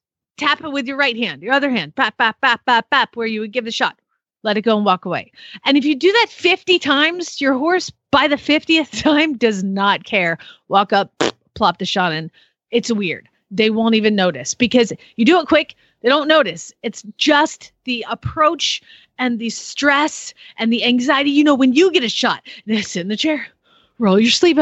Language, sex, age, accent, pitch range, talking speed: English, female, 30-49, American, 220-290 Hz, 205 wpm